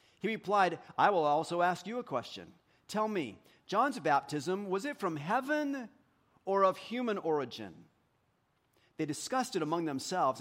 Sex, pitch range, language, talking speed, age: male, 170-255 Hz, English, 150 wpm, 40-59